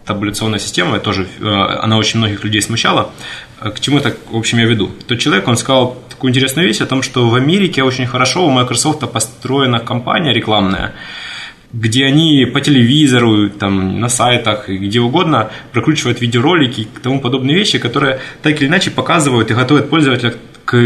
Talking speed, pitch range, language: 175 wpm, 110-135 Hz, English